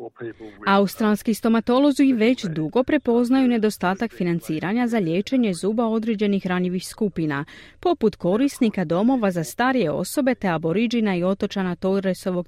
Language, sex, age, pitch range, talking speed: Croatian, female, 30-49, 175-250 Hz, 115 wpm